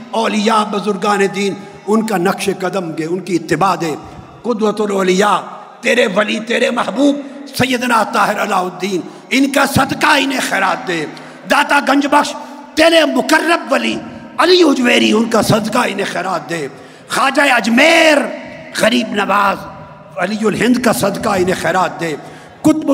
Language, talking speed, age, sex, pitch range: Urdu, 140 wpm, 50-69, male, 205-280 Hz